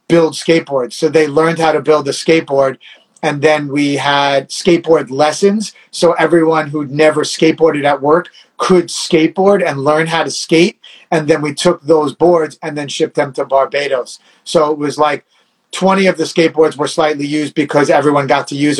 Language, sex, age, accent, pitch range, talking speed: English, male, 30-49, American, 150-175 Hz, 185 wpm